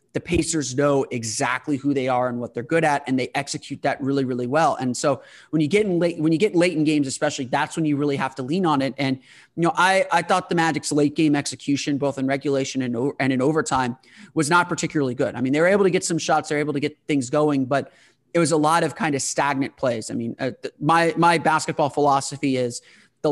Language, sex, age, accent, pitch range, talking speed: English, male, 30-49, American, 135-160 Hz, 255 wpm